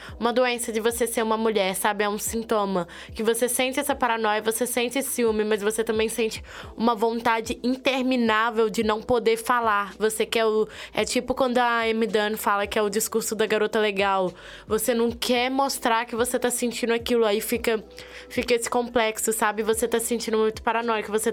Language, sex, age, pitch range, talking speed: Portuguese, female, 10-29, 215-235 Hz, 190 wpm